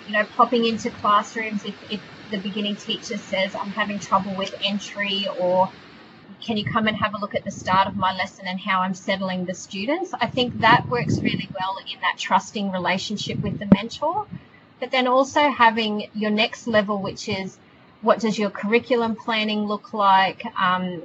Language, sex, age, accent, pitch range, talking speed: English, female, 30-49, Australian, 190-220 Hz, 190 wpm